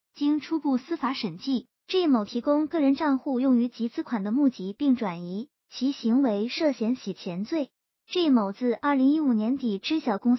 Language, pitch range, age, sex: Chinese, 220-280 Hz, 20-39, male